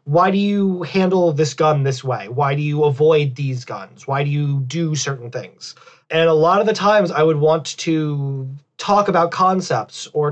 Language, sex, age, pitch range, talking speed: English, male, 30-49, 140-170 Hz, 200 wpm